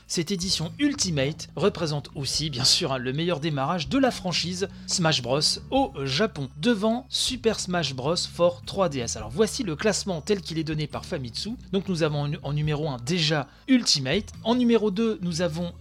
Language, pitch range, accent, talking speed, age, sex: French, 150-215 Hz, French, 180 wpm, 30-49, male